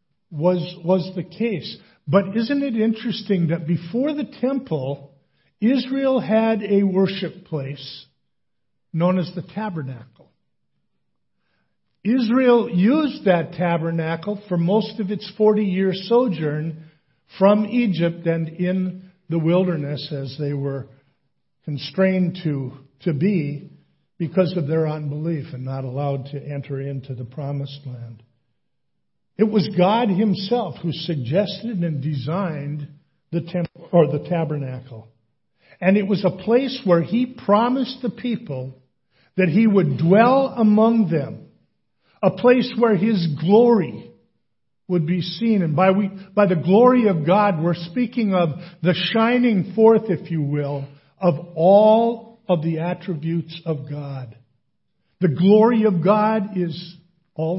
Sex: male